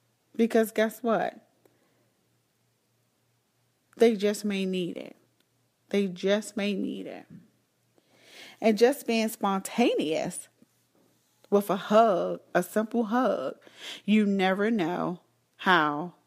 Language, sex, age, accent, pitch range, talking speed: English, female, 30-49, American, 175-225 Hz, 100 wpm